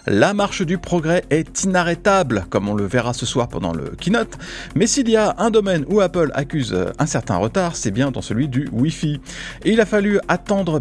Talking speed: 210 wpm